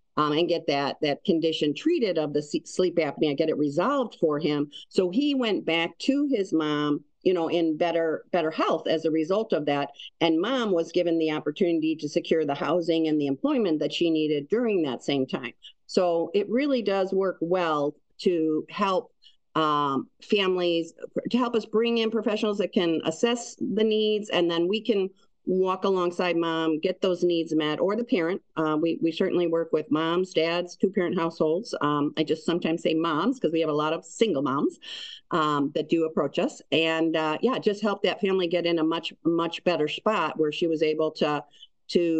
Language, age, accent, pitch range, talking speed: English, 50-69, American, 155-195 Hz, 195 wpm